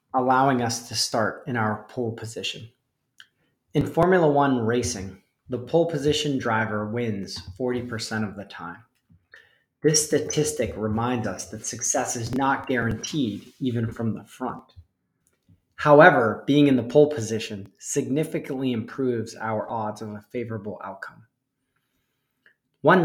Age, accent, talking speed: 30-49, American, 130 wpm